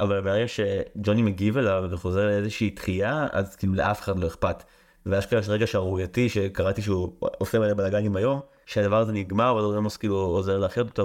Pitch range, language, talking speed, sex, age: 95-115 Hz, Hebrew, 195 wpm, male, 30-49